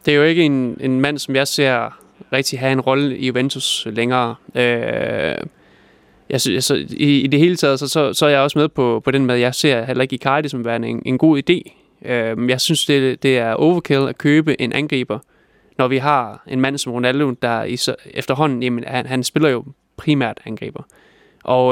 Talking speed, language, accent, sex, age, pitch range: 220 wpm, Danish, native, male, 20-39, 125-150 Hz